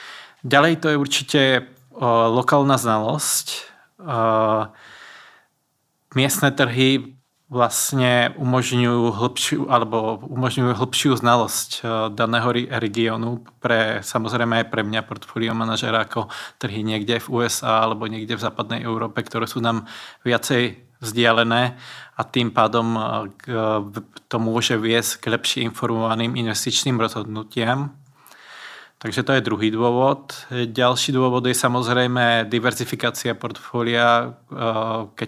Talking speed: 100 wpm